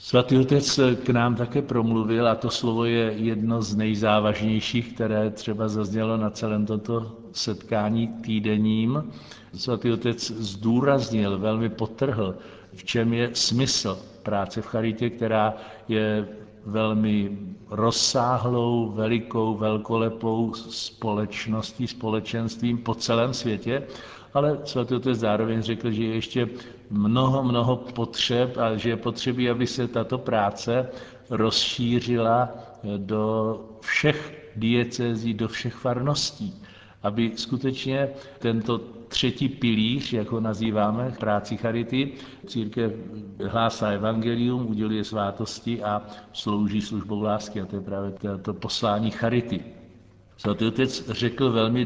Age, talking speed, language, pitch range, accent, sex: 60-79, 115 wpm, Czech, 110-120 Hz, native, male